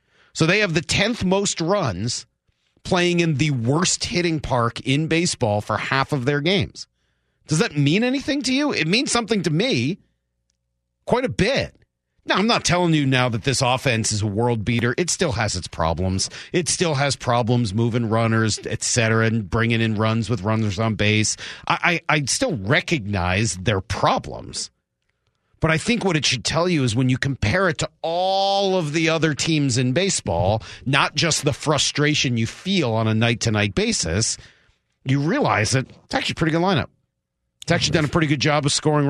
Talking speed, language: 190 wpm, English